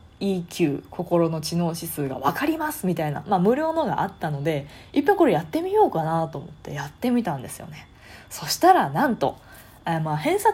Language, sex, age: Japanese, female, 20-39